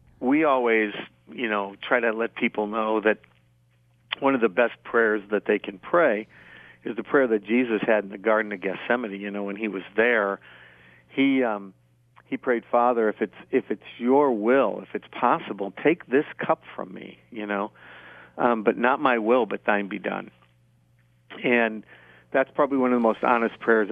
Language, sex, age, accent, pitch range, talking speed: English, male, 50-69, American, 100-125 Hz, 190 wpm